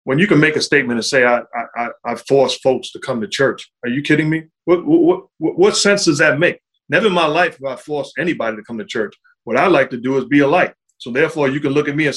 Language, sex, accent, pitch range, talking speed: English, male, American, 135-185 Hz, 280 wpm